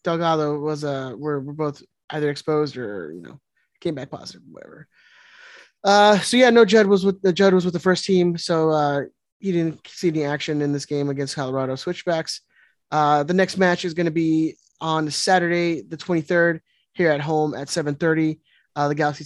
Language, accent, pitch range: English, American, 150-180 Hz